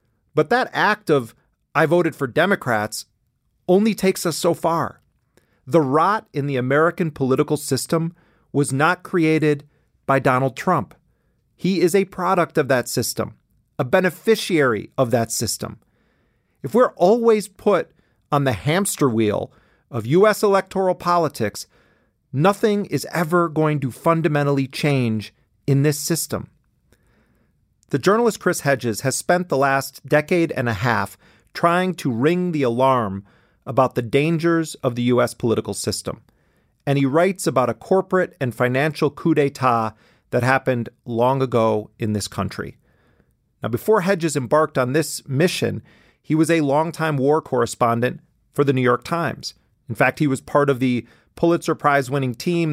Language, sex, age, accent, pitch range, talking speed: English, male, 40-59, American, 125-165 Hz, 150 wpm